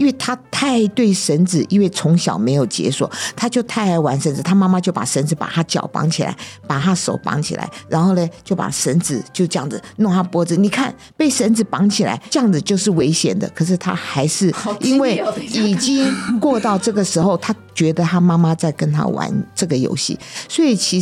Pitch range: 155-195 Hz